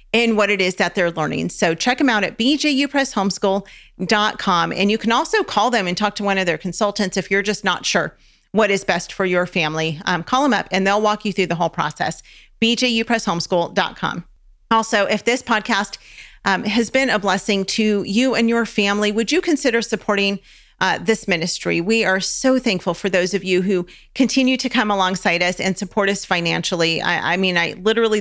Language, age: English, 40-59